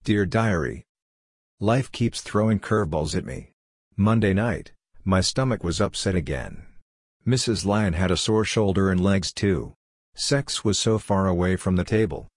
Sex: male